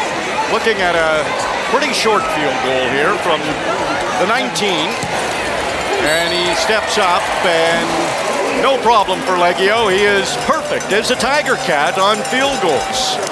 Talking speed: 135 wpm